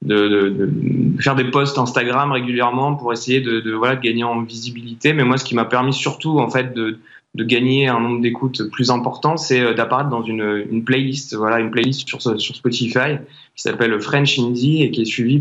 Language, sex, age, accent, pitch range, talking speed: French, male, 20-39, French, 115-130 Hz, 205 wpm